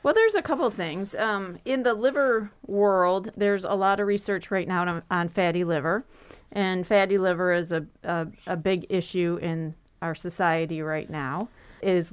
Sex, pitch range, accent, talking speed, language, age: female, 165-190 Hz, American, 180 wpm, English, 30-49